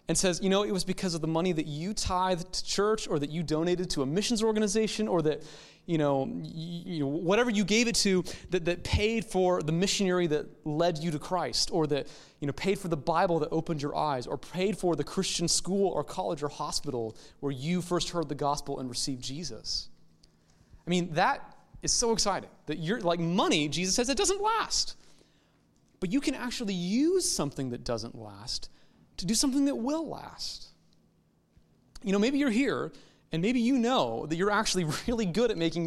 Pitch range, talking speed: 150-205 Hz, 205 wpm